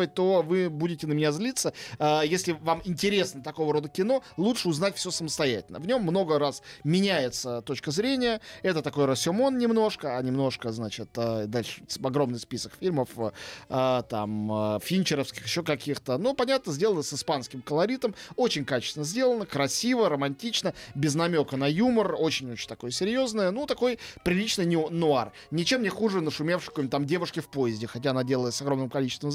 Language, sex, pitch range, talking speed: Russian, male, 135-190 Hz, 145 wpm